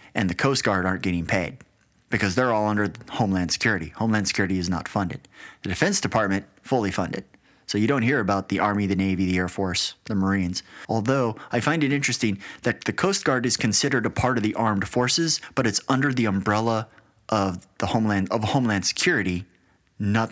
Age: 30-49